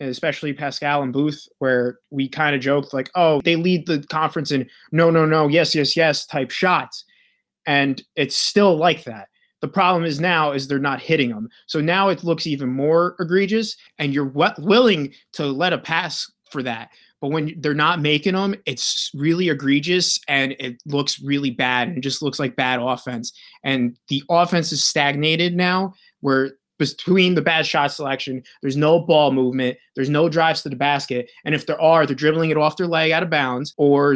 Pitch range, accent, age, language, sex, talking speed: 140-185 Hz, American, 20-39, English, male, 195 wpm